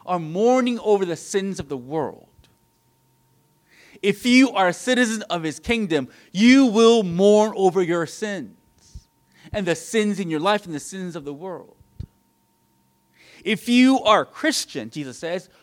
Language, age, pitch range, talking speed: English, 30-49, 165-220 Hz, 155 wpm